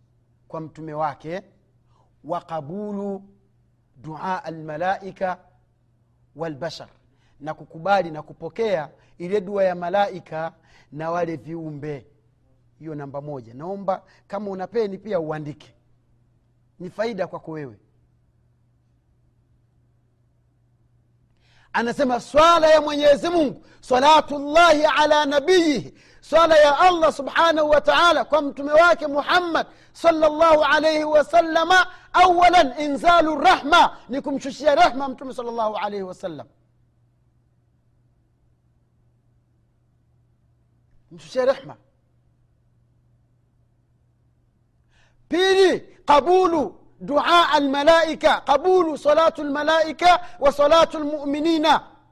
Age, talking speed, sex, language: 40-59, 85 wpm, male, Swahili